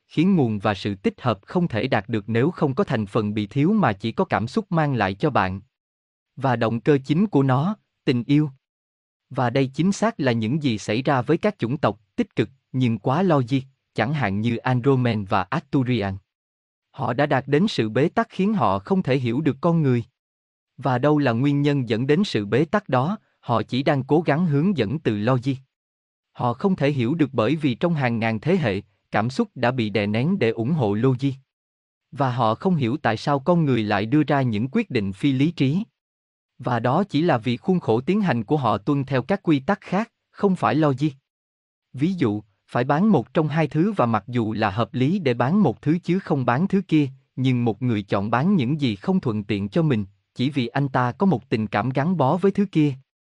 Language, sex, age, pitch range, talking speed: Vietnamese, male, 20-39, 115-155 Hz, 225 wpm